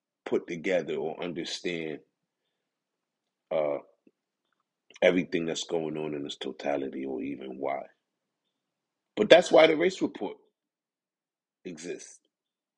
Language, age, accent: English, 30-49, American